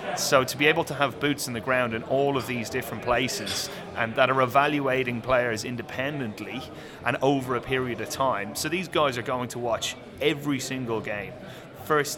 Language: English